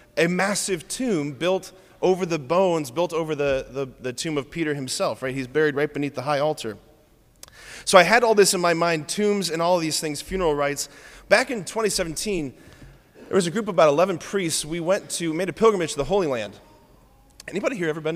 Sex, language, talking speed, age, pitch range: male, English, 215 wpm, 30-49, 135-180 Hz